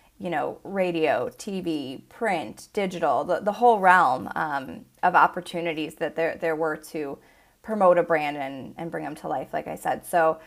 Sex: female